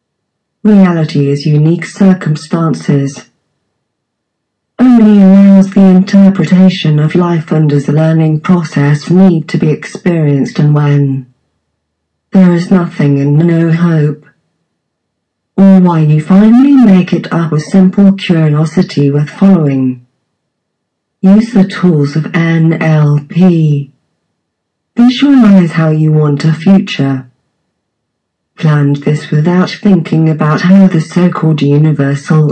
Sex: female